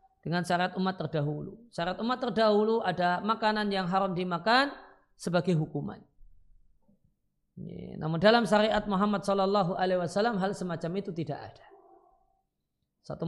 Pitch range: 160-210 Hz